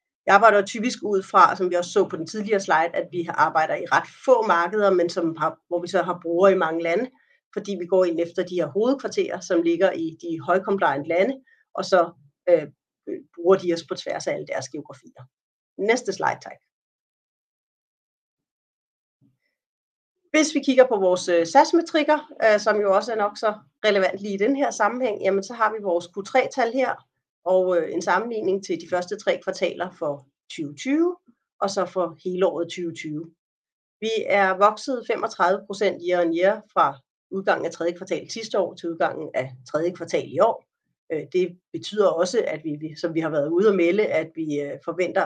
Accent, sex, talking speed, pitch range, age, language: native, female, 185 wpm, 170-220 Hz, 30-49, Danish